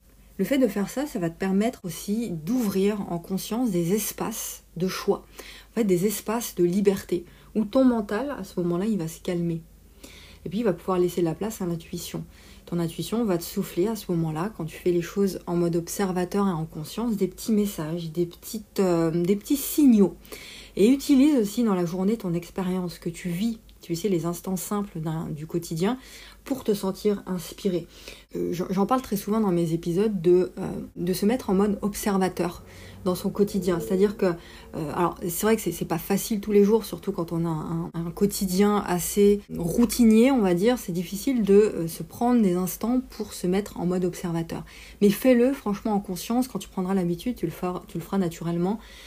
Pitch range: 175-210 Hz